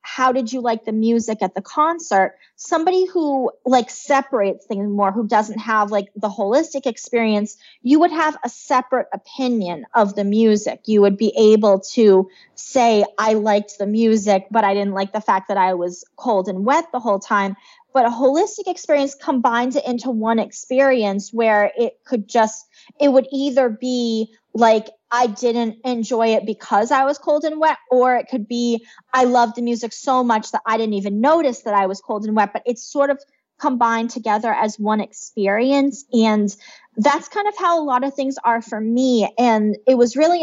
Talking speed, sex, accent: 195 wpm, female, American